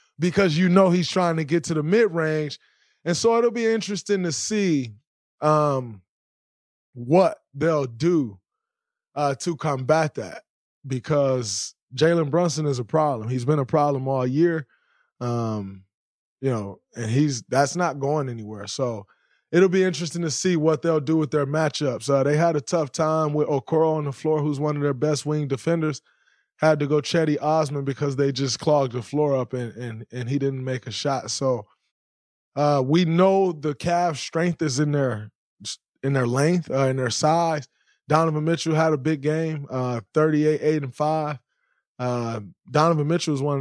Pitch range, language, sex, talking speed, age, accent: 130-160 Hz, English, male, 175 wpm, 20-39, American